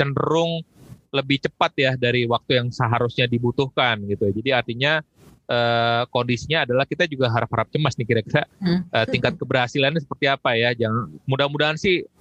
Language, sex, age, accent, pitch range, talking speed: Indonesian, male, 30-49, native, 110-135 Hz, 145 wpm